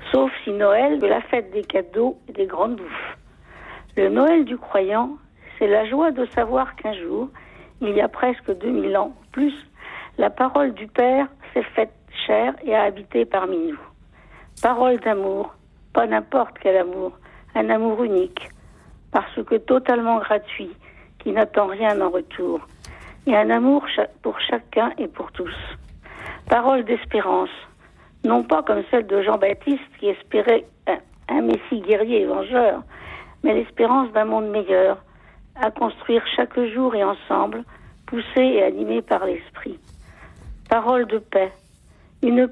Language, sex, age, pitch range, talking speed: French, female, 60-79, 210-255 Hz, 150 wpm